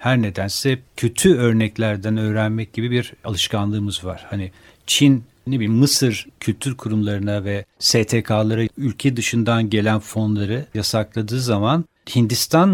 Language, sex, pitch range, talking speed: Turkish, male, 105-135 Hz, 120 wpm